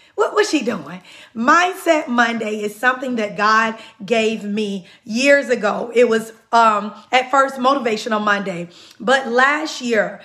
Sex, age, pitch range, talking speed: female, 30-49, 230-280 Hz, 140 wpm